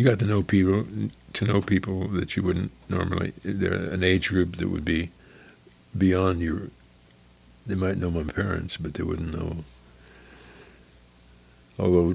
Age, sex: 60-79, male